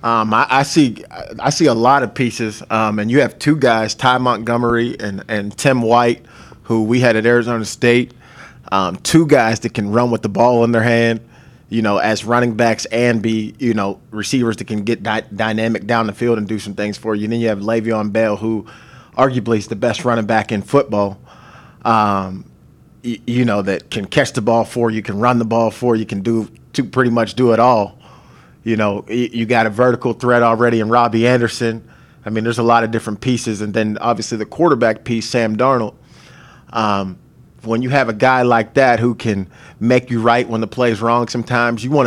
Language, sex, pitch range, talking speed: English, male, 110-120 Hz, 215 wpm